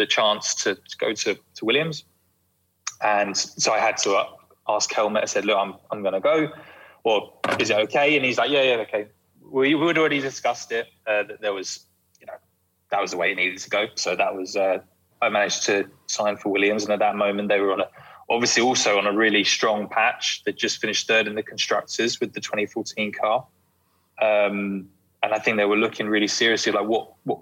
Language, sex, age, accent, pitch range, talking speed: English, male, 20-39, British, 100-120 Hz, 220 wpm